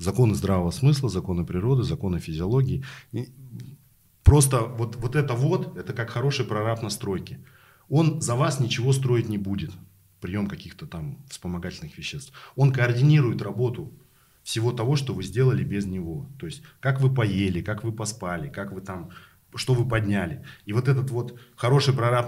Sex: male